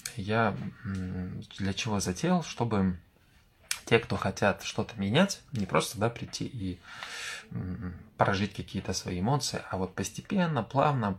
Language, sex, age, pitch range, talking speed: Russian, male, 20-39, 95-115 Hz, 135 wpm